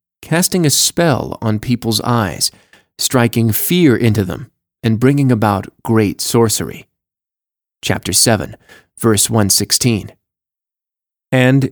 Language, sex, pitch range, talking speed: English, male, 110-145 Hz, 100 wpm